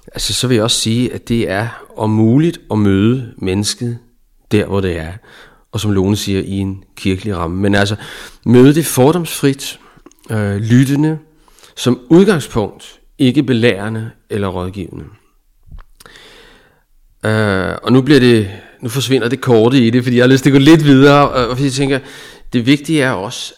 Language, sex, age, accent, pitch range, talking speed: Danish, male, 30-49, native, 105-130 Hz, 170 wpm